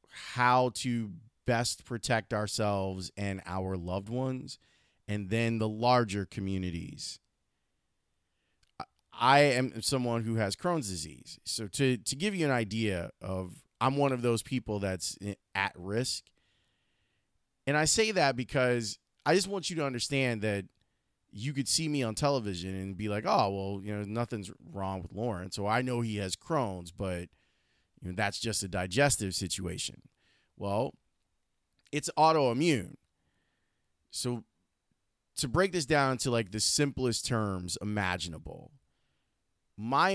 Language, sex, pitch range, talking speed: English, male, 95-130 Hz, 140 wpm